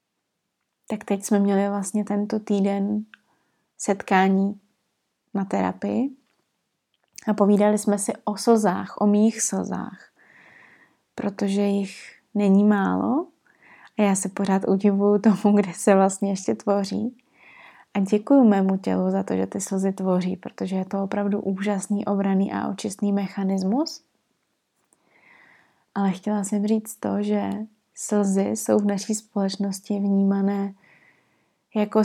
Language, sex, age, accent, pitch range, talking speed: Czech, female, 20-39, native, 195-210 Hz, 125 wpm